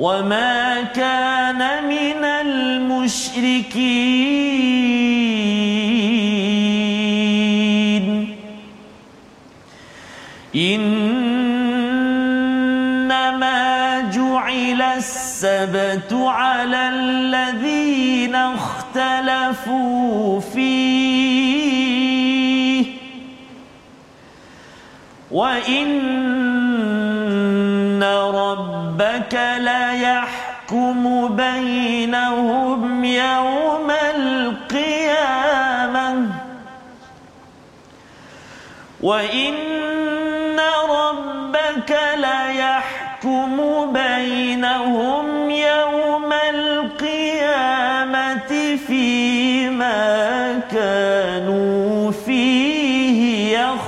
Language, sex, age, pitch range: Malayalam, male, 40-59, 235-260 Hz